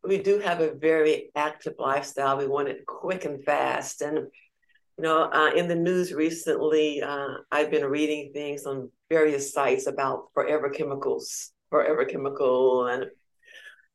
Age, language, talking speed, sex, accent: 60-79, English, 150 wpm, female, American